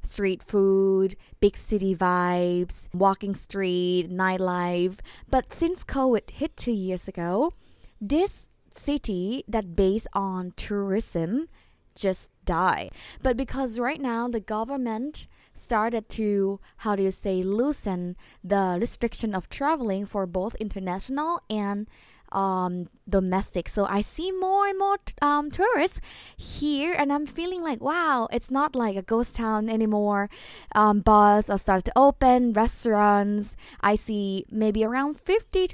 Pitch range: 195-255 Hz